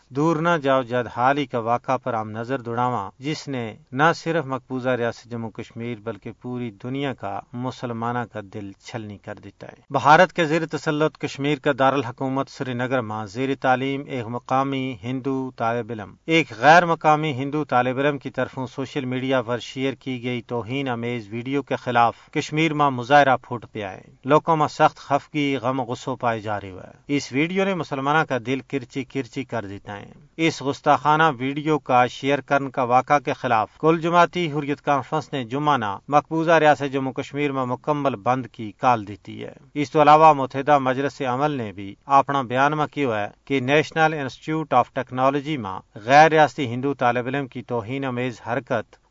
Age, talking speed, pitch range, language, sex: 40-59, 175 wpm, 120-145 Hz, Urdu, male